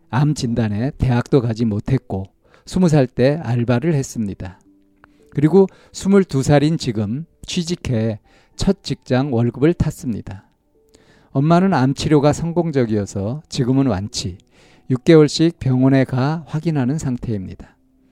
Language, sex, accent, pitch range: Korean, male, native, 110-145 Hz